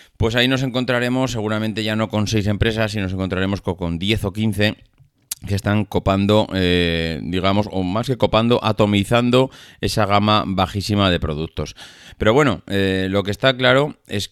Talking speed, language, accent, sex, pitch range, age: 170 wpm, Spanish, Spanish, male, 95-115 Hz, 30-49